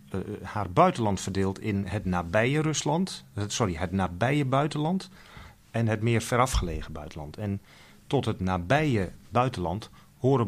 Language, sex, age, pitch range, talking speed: Dutch, male, 40-59, 95-125 Hz, 130 wpm